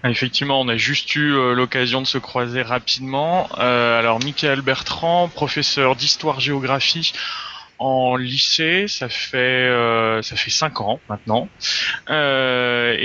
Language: French